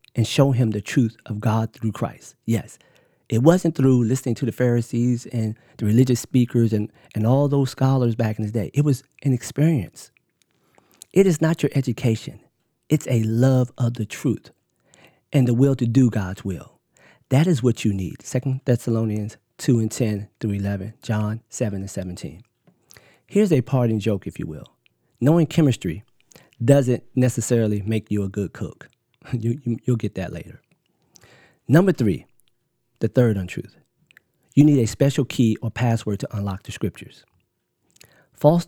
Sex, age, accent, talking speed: male, 40-59, American, 165 wpm